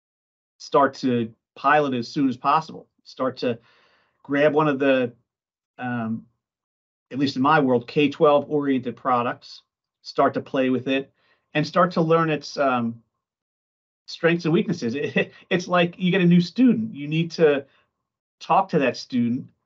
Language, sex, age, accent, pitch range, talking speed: Spanish, male, 40-59, American, 125-165 Hz, 155 wpm